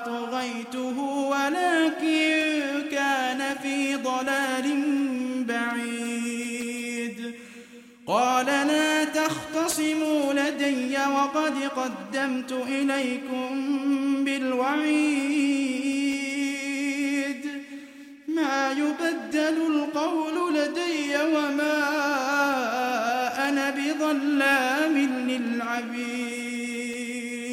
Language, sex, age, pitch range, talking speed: Arabic, male, 20-39, 255-295 Hz, 45 wpm